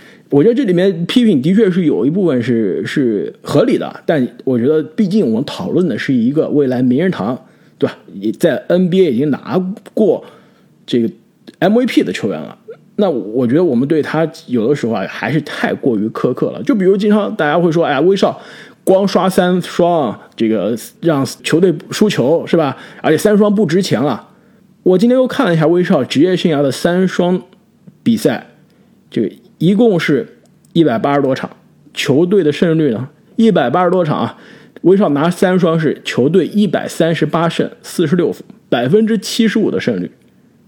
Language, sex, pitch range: Chinese, male, 155-225 Hz